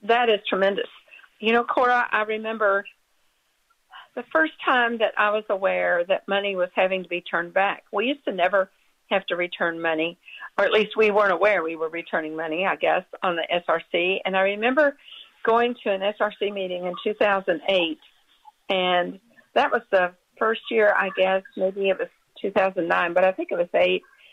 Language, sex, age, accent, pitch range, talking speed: English, female, 50-69, American, 185-235 Hz, 185 wpm